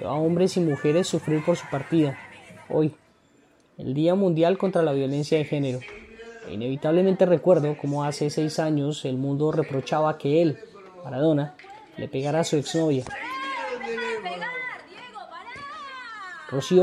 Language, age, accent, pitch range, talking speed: Spanish, 20-39, Colombian, 145-175 Hz, 125 wpm